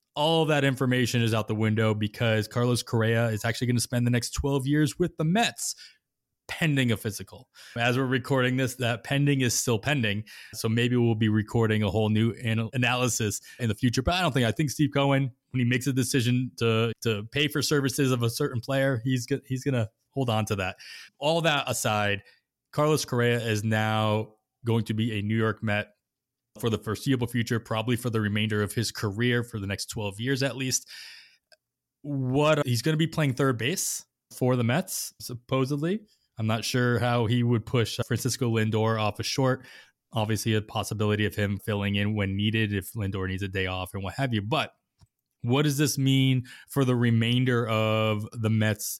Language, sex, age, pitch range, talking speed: English, male, 20-39, 110-135 Hz, 195 wpm